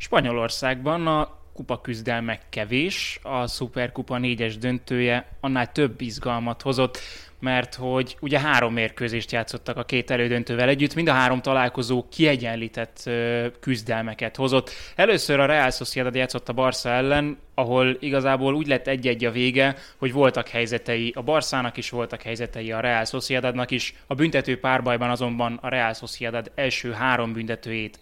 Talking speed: 145 wpm